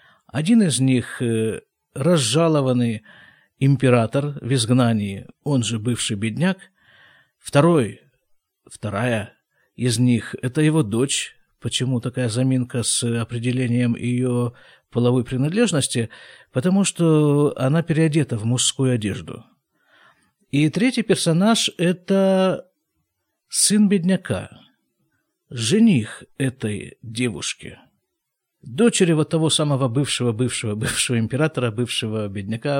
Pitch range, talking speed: 120-170 Hz, 100 wpm